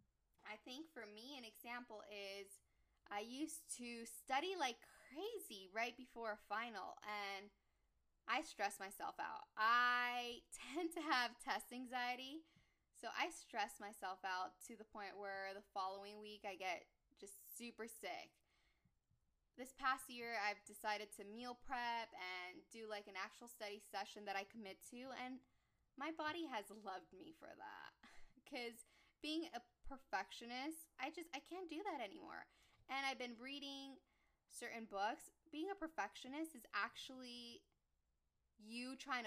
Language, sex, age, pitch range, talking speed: English, female, 10-29, 205-270 Hz, 145 wpm